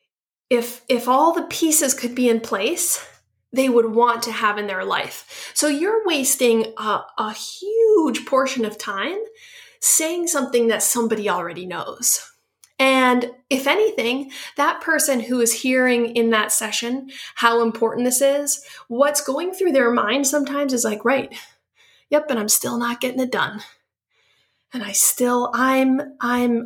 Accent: American